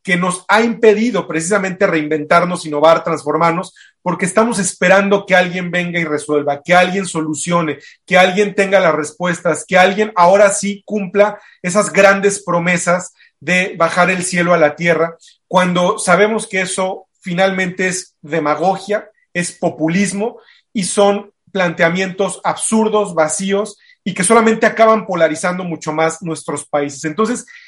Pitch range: 165-200 Hz